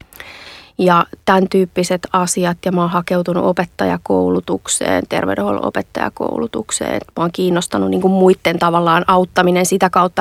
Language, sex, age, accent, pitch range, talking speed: Finnish, female, 30-49, native, 175-220 Hz, 120 wpm